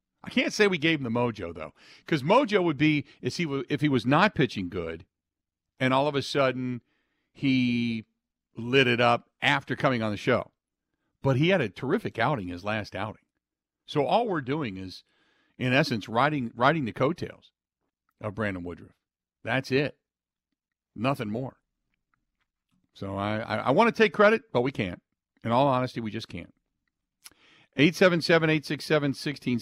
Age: 50-69